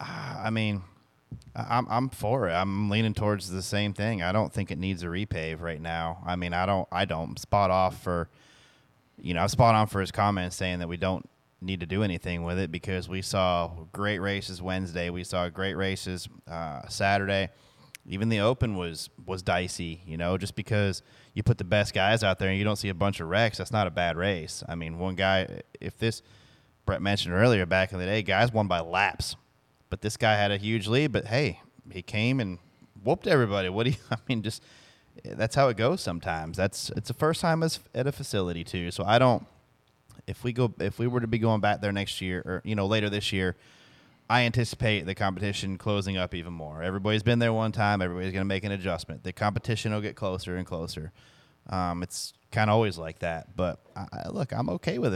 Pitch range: 90-110 Hz